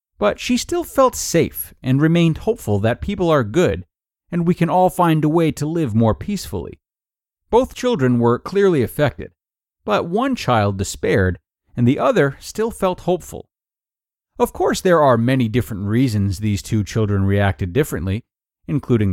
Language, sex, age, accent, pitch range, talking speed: English, male, 30-49, American, 105-165 Hz, 160 wpm